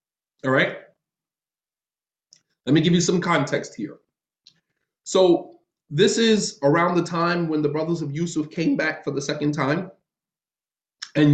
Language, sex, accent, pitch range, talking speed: English, male, American, 145-175 Hz, 145 wpm